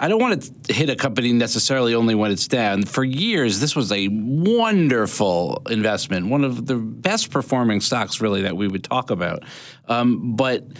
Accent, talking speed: American, 185 wpm